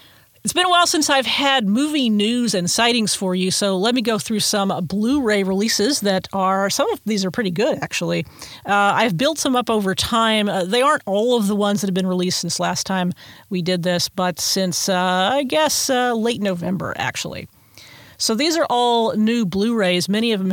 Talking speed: 215 wpm